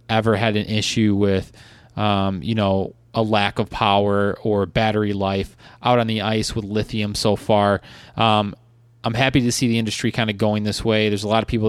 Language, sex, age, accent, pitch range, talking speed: English, male, 20-39, American, 105-120 Hz, 205 wpm